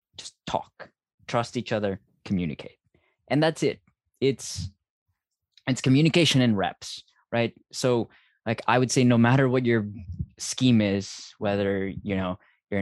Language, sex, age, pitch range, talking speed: English, male, 20-39, 105-130 Hz, 140 wpm